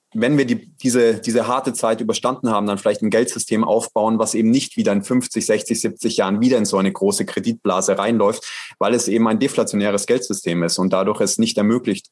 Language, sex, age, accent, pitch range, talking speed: German, male, 30-49, German, 105-125 Hz, 210 wpm